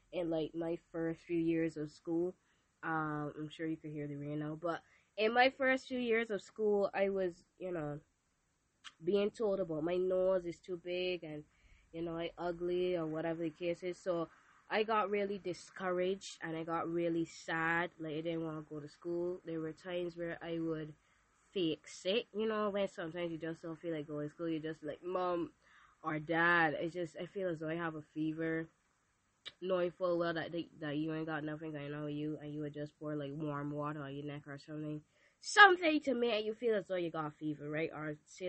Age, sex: 20-39, female